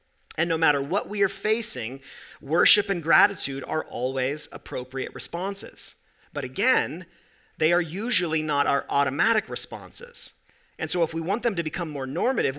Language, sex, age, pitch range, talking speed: English, male, 40-59, 140-190 Hz, 155 wpm